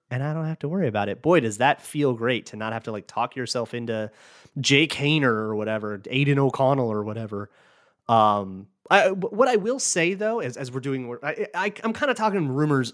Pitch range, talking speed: 110-155 Hz, 225 wpm